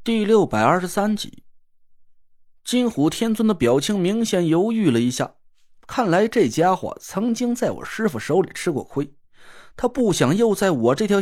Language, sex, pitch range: Chinese, male, 185-240 Hz